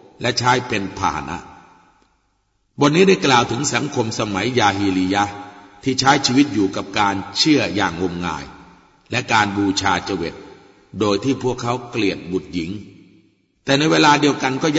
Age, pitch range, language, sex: 60-79, 95-125 Hz, Thai, male